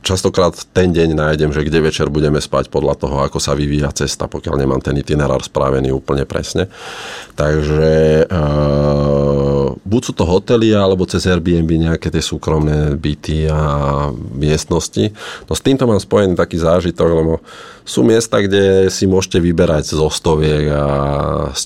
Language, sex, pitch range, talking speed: Slovak, male, 75-95 Hz, 145 wpm